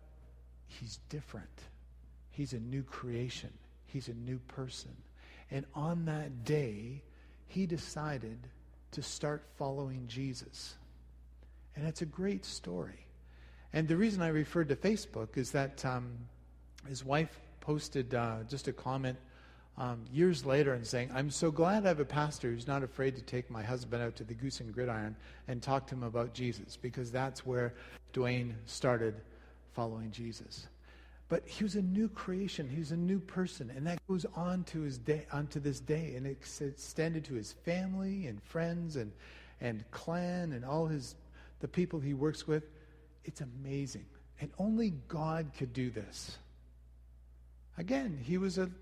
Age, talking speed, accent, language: 50-69, 160 wpm, American, English